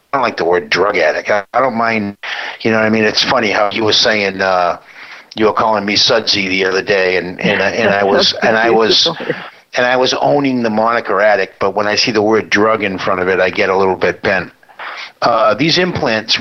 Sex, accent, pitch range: male, American, 100-130 Hz